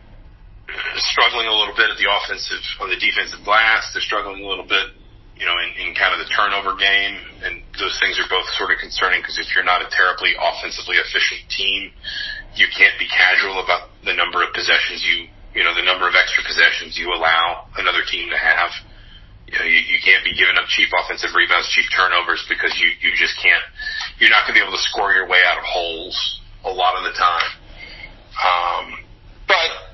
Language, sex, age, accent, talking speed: English, male, 40-59, American, 205 wpm